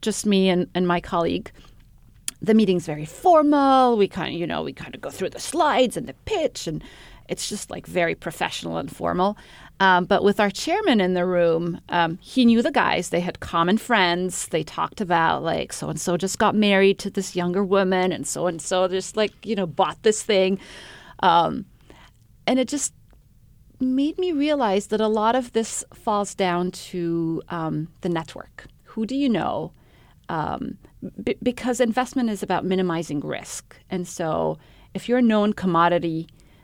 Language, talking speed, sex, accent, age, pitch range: English, 180 wpm, female, American, 30-49, 170-220 Hz